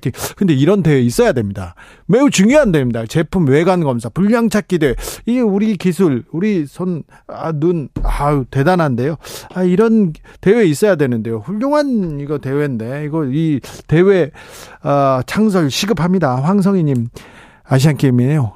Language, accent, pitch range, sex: Korean, native, 140-200 Hz, male